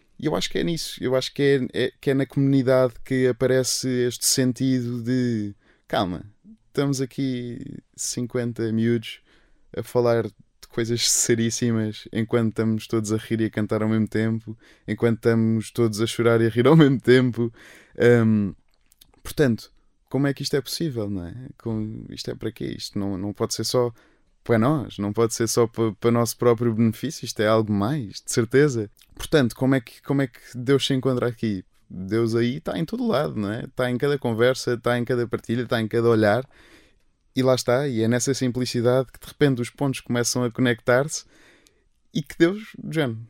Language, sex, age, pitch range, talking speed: Portuguese, male, 20-39, 115-130 Hz, 195 wpm